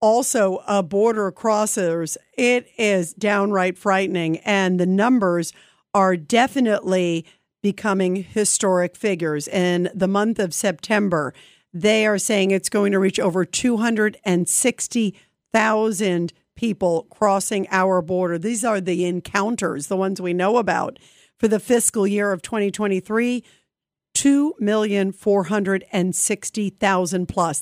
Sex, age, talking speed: female, 50-69, 110 wpm